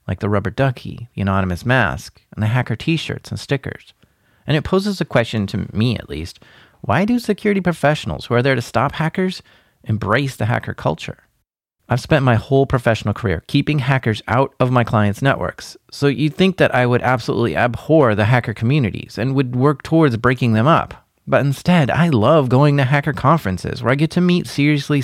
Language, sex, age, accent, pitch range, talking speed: English, male, 30-49, American, 115-150 Hz, 195 wpm